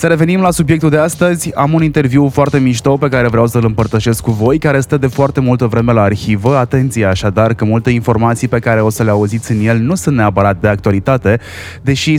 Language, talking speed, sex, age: Romanian, 220 wpm, male, 20-39